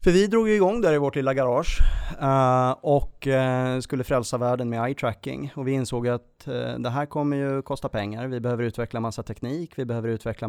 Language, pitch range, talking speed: Swedish, 115-130 Hz, 195 wpm